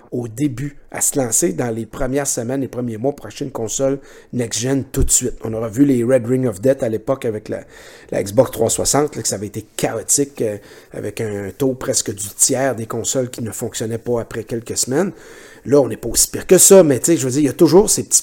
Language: French